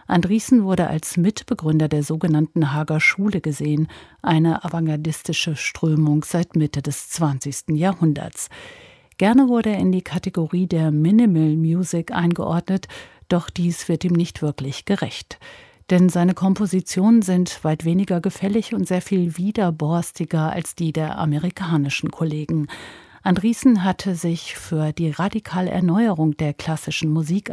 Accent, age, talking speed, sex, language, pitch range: German, 50-69, 130 wpm, female, German, 155-190 Hz